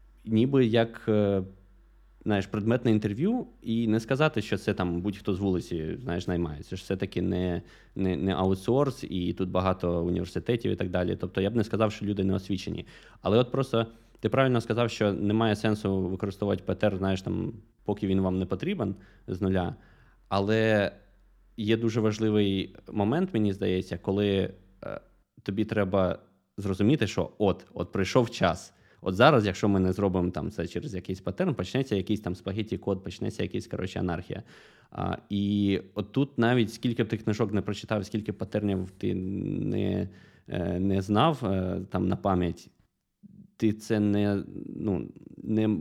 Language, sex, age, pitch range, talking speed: Ukrainian, male, 20-39, 95-110 Hz, 150 wpm